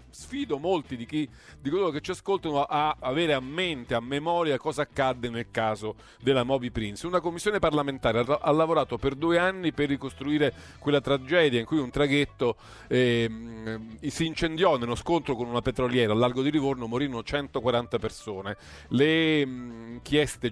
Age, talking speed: 40-59, 165 wpm